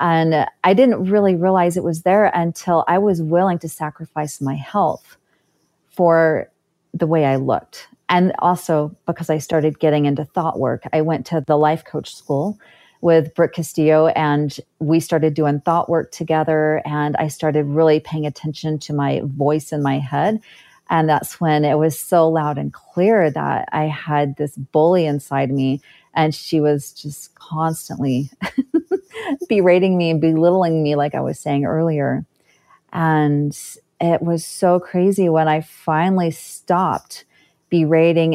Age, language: 40-59, English